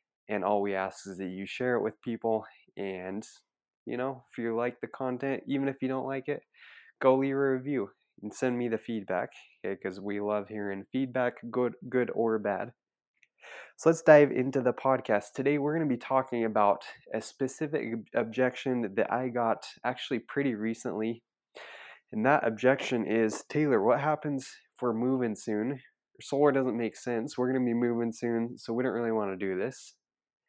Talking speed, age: 185 wpm, 20-39